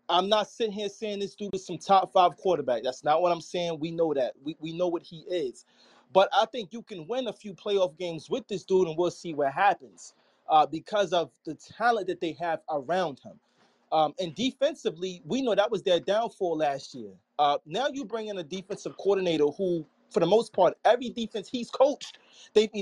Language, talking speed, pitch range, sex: English, 220 wpm, 160-200 Hz, male